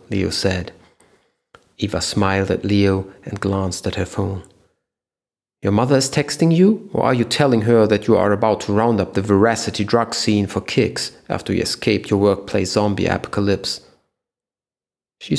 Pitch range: 95-115 Hz